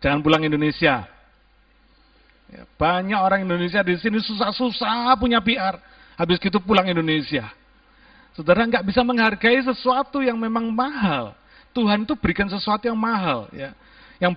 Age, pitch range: 50-69, 175-270 Hz